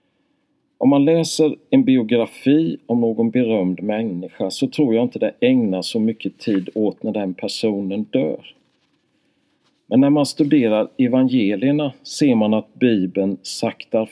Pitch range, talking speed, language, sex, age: 95-135 Hz, 140 wpm, Swedish, male, 50-69